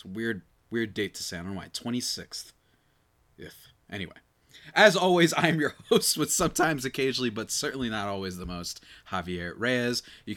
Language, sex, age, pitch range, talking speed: English, male, 20-39, 105-140 Hz, 175 wpm